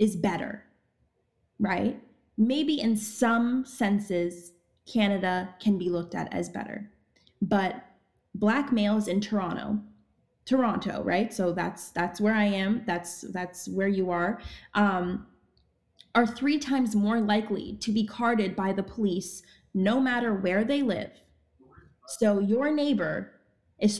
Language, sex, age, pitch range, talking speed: English, female, 20-39, 190-230 Hz, 135 wpm